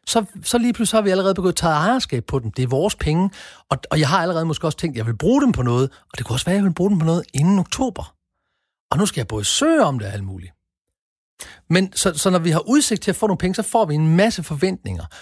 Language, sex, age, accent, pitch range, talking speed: Danish, male, 40-59, native, 115-185 Hz, 290 wpm